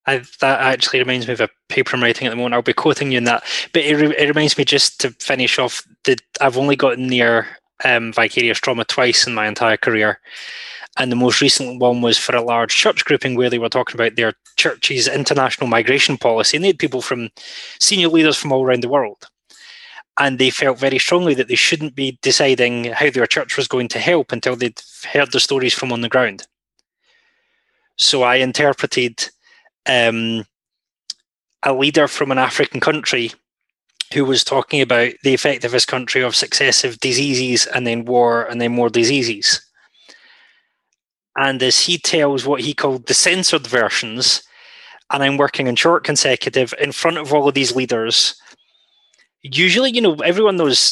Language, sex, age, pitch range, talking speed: English, male, 20-39, 125-170 Hz, 185 wpm